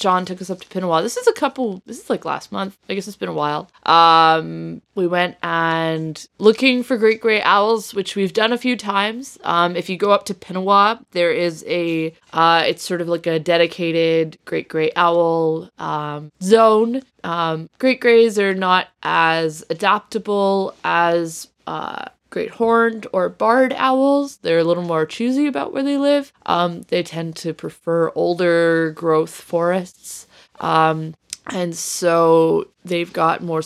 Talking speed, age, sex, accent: 170 wpm, 20-39, female, American